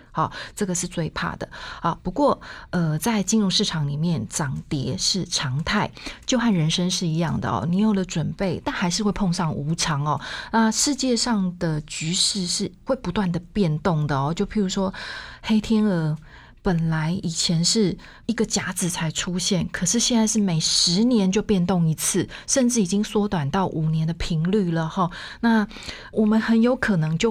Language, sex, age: Chinese, female, 30-49